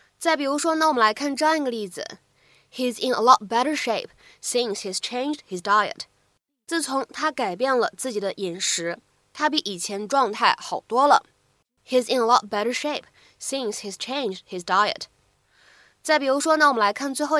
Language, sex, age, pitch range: Chinese, female, 10-29, 210-295 Hz